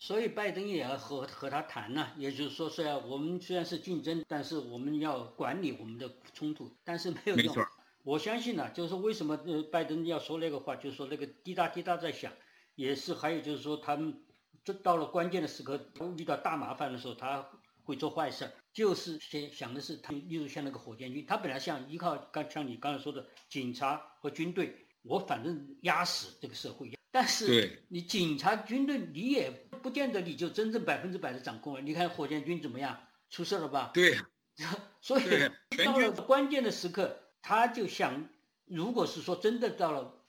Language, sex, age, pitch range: Chinese, male, 50-69, 145-190 Hz